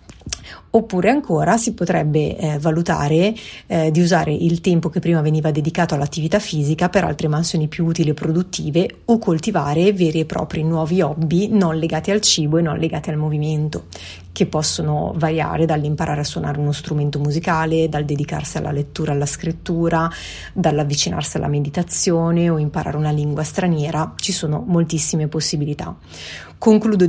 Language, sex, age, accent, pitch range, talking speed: Italian, female, 30-49, native, 150-175 Hz, 150 wpm